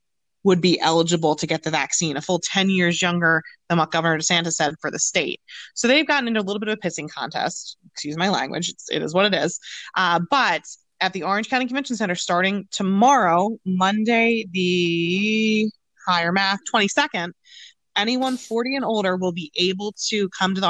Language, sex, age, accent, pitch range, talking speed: English, female, 20-39, American, 175-220 Hz, 190 wpm